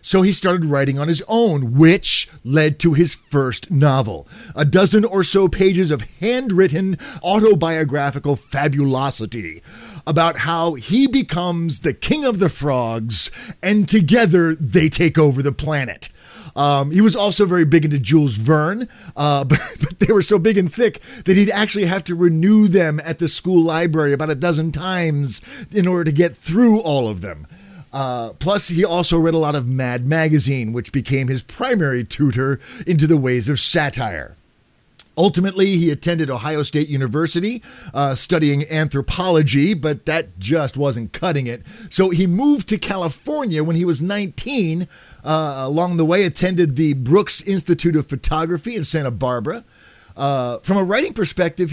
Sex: male